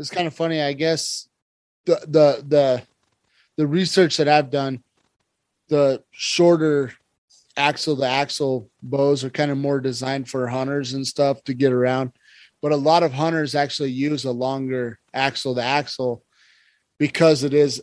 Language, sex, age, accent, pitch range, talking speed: English, male, 30-49, American, 125-150 Hz, 160 wpm